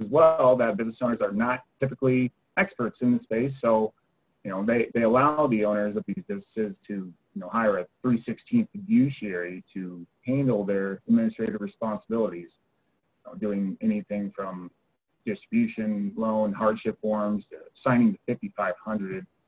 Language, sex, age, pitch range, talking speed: English, male, 30-49, 105-130 Hz, 150 wpm